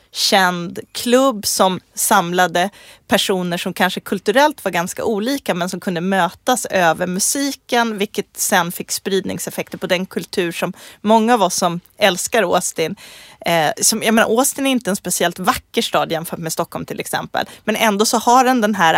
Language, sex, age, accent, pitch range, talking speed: English, female, 30-49, Swedish, 175-225 Hz, 170 wpm